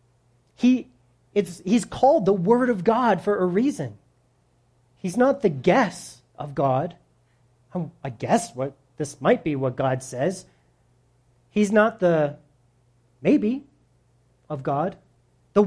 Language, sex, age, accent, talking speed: English, male, 30-49, American, 130 wpm